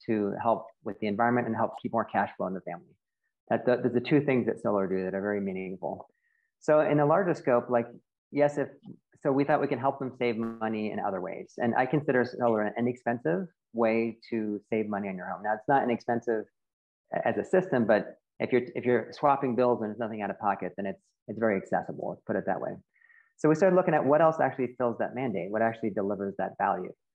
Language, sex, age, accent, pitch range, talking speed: English, male, 30-49, American, 105-130 Hz, 230 wpm